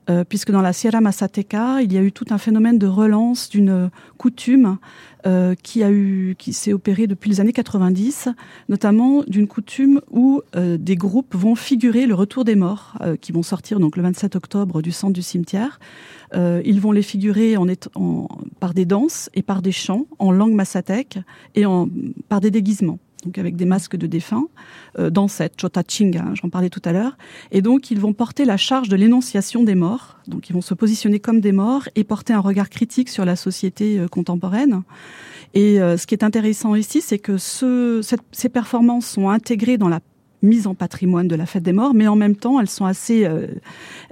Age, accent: 30-49, French